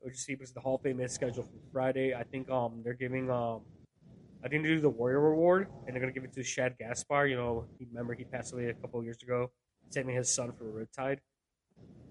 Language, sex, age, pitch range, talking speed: English, male, 20-39, 120-145 Hz, 240 wpm